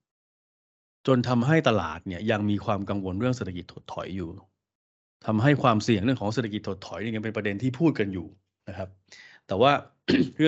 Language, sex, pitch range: Thai, male, 100-130 Hz